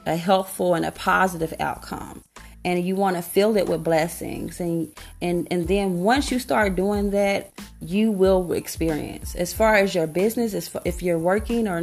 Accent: American